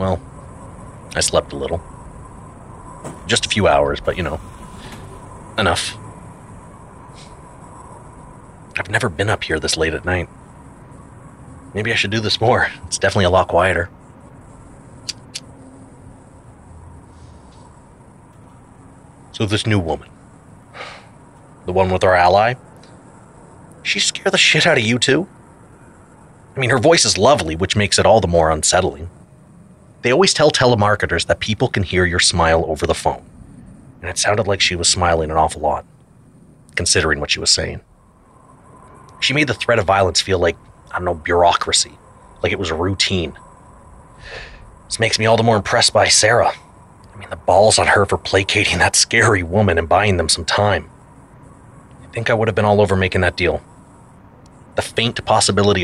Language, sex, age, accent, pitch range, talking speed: English, male, 30-49, American, 90-125 Hz, 160 wpm